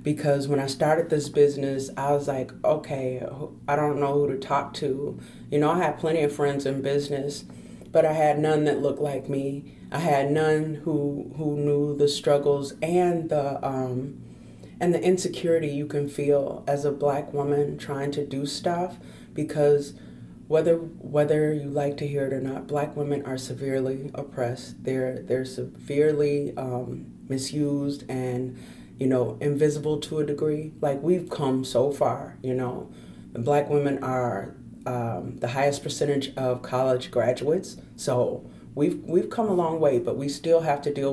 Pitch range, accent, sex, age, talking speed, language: 135-155 Hz, American, female, 30-49, 170 wpm, English